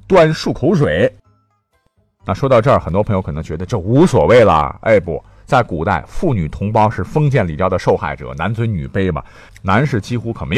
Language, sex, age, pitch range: Chinese, male, 50-69, 95-125 Hz